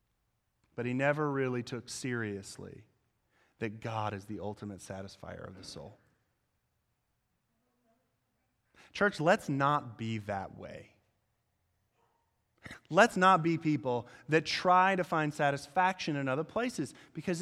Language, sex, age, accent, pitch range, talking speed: English, male, 30-49, American, 115-155 Hz, 115 wpm